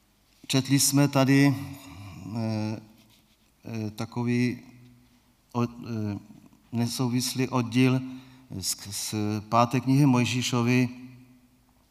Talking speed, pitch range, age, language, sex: 75 wpm, 115-135 Hz, 40-59, Czech, male